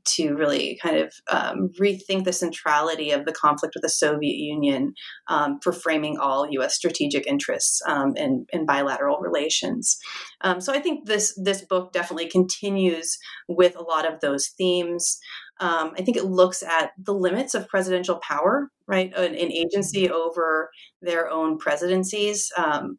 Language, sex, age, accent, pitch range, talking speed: English, female, 30-49, American, 165-200 Hz, 160 wpm